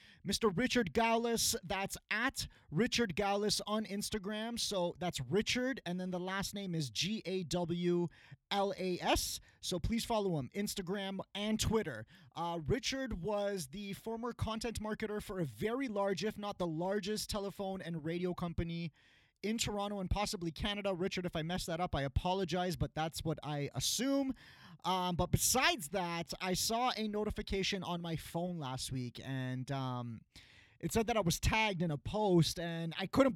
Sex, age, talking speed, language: male, 30-49, 160 wpm, English